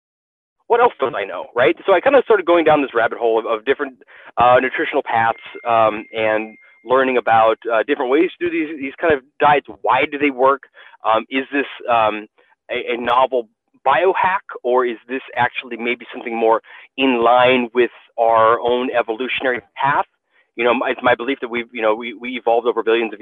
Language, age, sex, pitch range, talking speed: Persian, 30-49, male, 120-160 Hz, 200 wpm